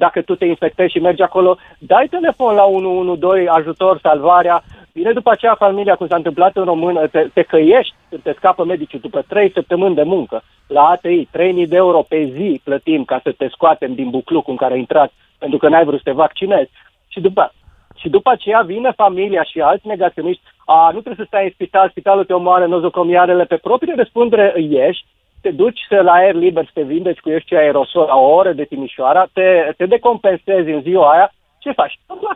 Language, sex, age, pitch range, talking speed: Romanian, male, 40-59, 155-195 Hz, 200 wpm